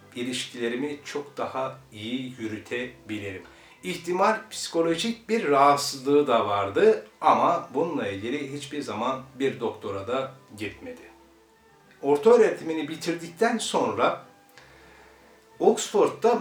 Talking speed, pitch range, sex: 90 wpm, 110-180 Hz, male